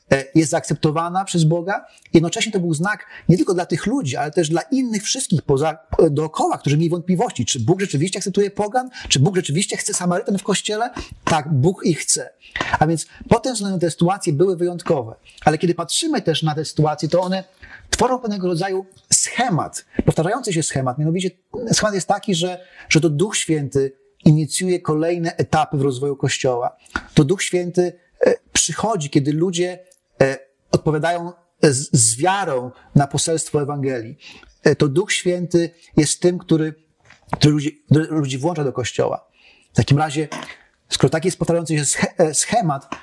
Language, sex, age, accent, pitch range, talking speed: Polish, male, 30-49, native, 145-180 Hz, 155 wpm